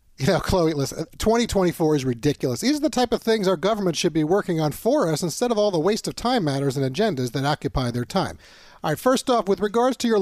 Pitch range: 150-210 Hz